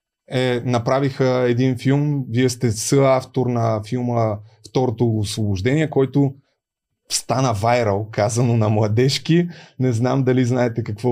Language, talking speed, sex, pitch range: Bulgarian, 120 wpm, male, 120-150 Hz